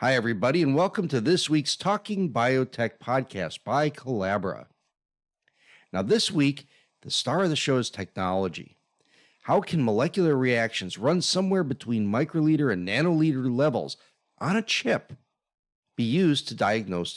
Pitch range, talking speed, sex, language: 110-150 Hz, 140 wpm, male, English